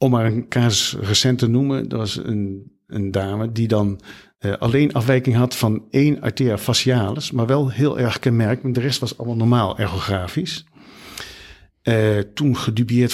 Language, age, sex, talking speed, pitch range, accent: Dutch, 50-69, male, 165 wpm, 110-130 Hz, Dutch